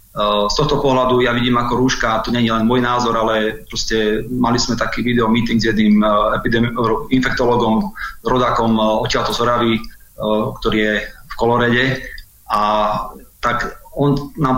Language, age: Slovak, 30-49